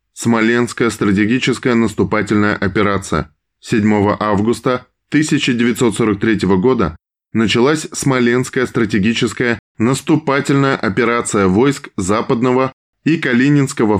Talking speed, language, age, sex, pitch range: 75 wpm, Russian, 10-29, male, 105-130 Hz